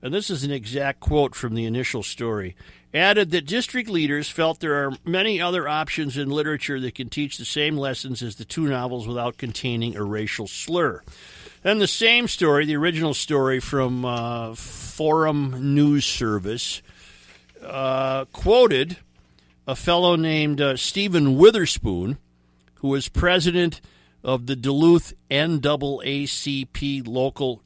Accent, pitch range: American, 115-155 Hz